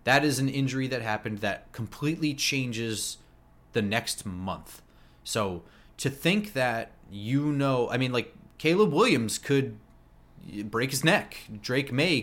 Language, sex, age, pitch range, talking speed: English, male, 30-49, 110-145 Hz, 140 wpm